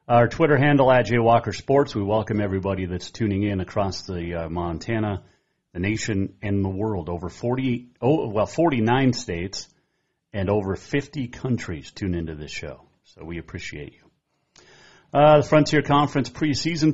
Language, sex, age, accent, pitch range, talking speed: English, male, 40-59, American, 95-125 Hz, 160 wpm